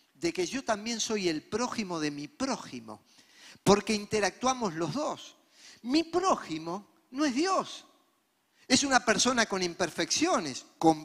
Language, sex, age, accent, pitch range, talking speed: Spanish, male, 50-69, Argentinian, 180-290 Hz, 135 wpm